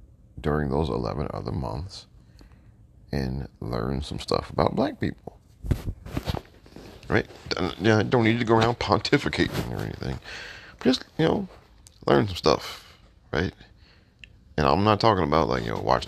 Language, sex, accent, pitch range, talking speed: English, male, American, 75-105 Hz, 155 wpm